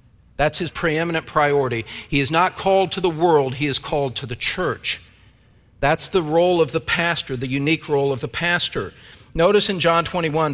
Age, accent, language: 50-69, American, English